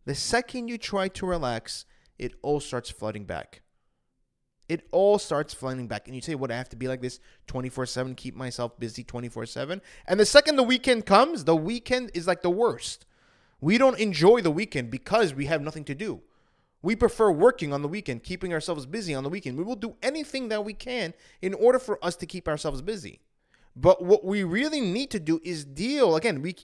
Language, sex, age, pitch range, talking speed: English, male, 20-39, 140-230 Hz, 205 wpm